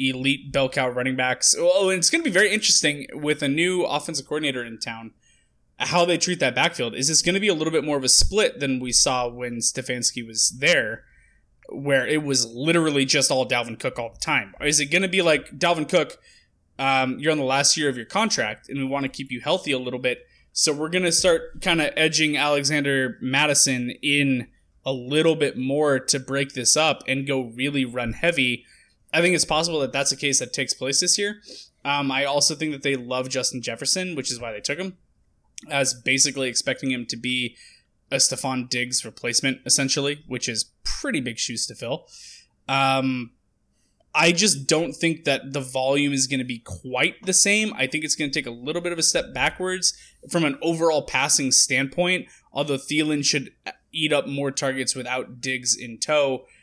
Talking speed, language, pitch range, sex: 210 wpm, English, 130-155 Hz, male